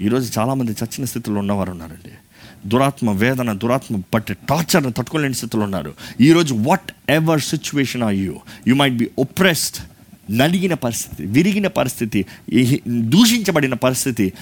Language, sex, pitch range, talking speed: Telugu, male, 105-140 Hz, 120 wpm